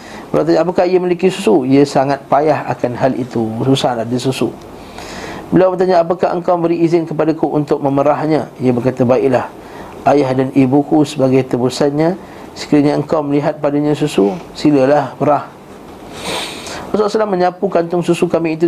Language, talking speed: Malay, 150 wpm